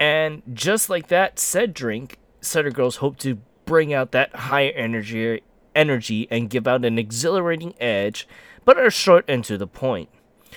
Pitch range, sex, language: 115-165 Hz, male, English